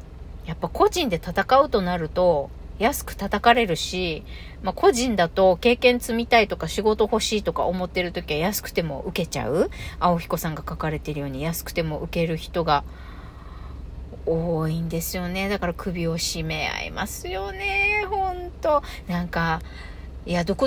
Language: Japanese